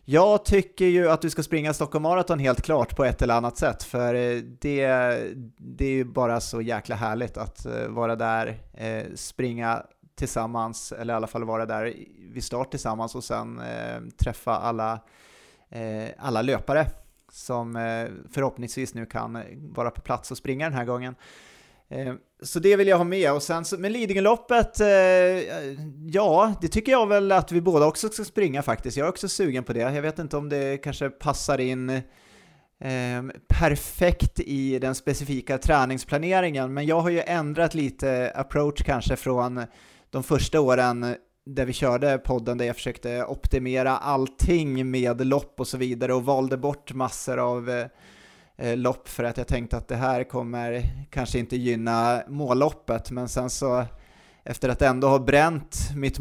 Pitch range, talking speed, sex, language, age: 120-145 Hz, 165 wpm, male, Swedish, 30-49